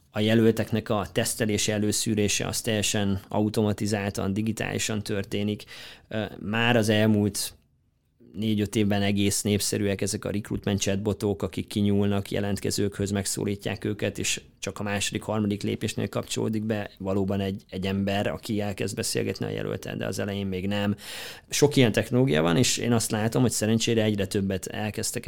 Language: Hungarian